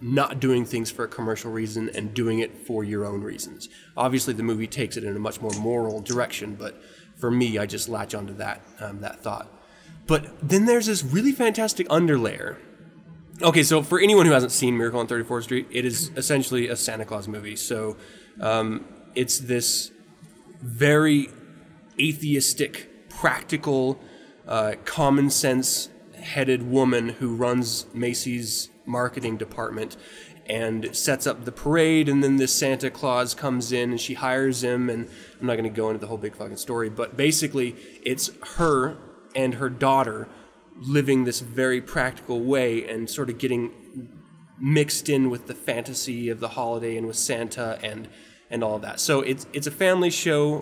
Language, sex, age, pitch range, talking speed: English, male, 20-39, 115-140 Hz, 170 wpm